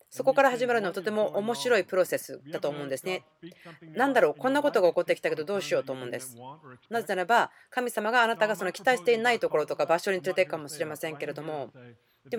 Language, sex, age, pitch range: Japanese, female, 30-49, 165-255 Hz